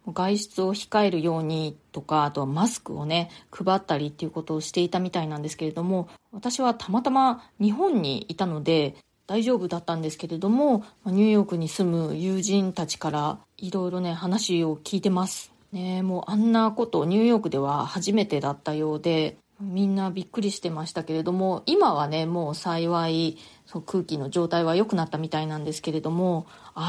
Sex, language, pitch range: female, Japanese, 160-210 Hz